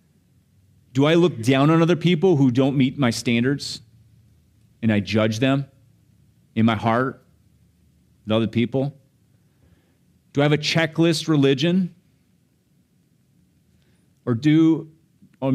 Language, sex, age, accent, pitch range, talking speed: English, male, 30-49, American, 115-155 Hz, 120 wpm